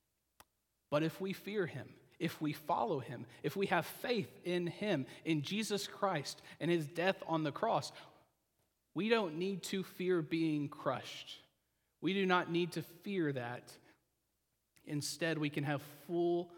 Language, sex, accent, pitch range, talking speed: English, male, American, 145-190 Hz, 155 wpm